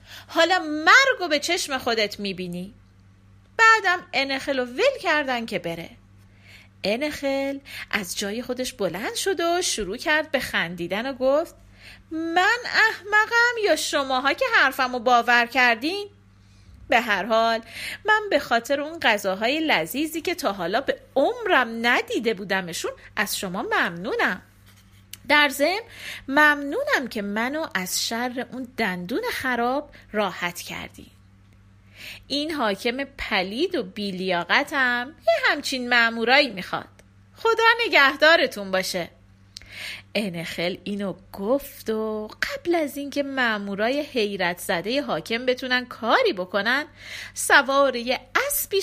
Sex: female